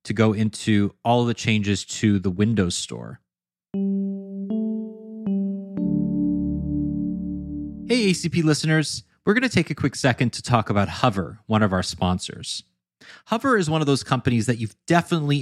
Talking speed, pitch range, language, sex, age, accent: 145 wpm, 100-150 Hz, English, male, 30-49, American